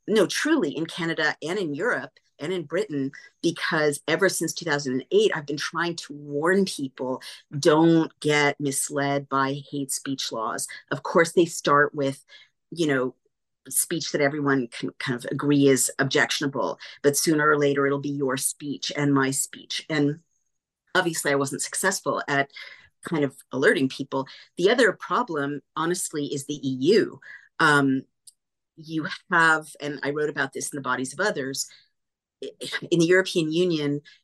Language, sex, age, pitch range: Dutch, female, 40-59, 135-165 Hz